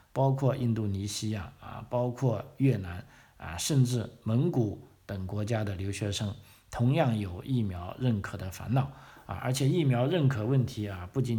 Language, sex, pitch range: Chinese, male, 95-120 Hz